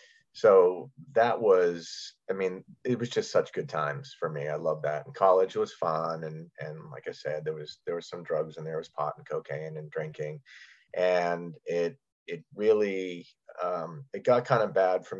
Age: 30-49